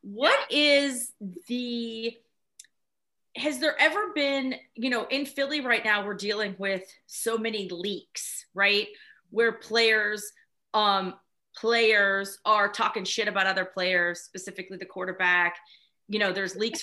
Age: 30-49